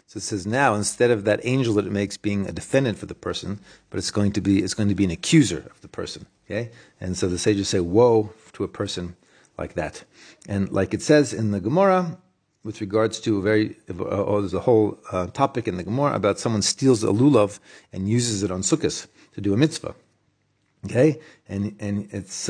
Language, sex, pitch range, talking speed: English, male, 100-125 Hz, 220 wpm